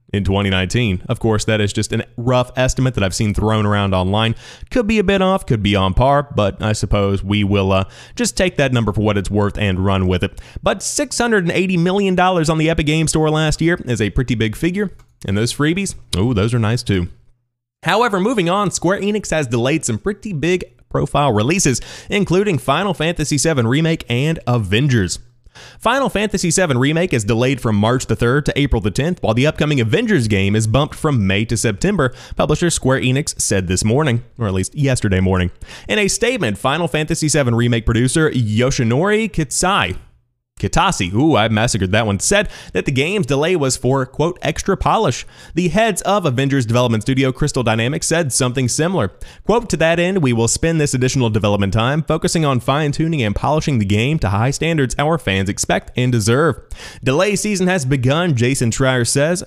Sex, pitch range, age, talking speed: male, 110-165 Hz, 30-49, 195 wpm